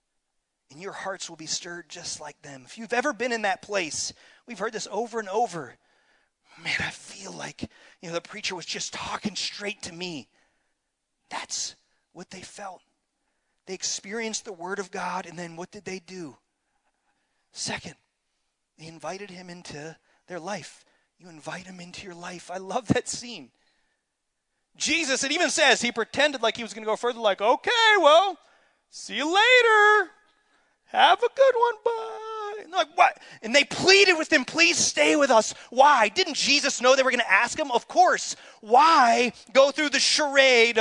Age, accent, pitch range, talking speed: 30-49, American, 190-295 Hz, 175 wpm